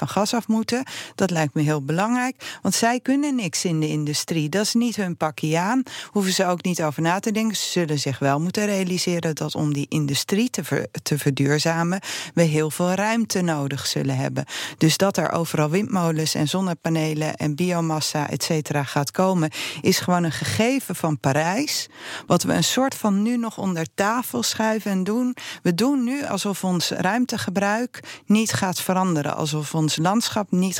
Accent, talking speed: Dutch, 185 wpm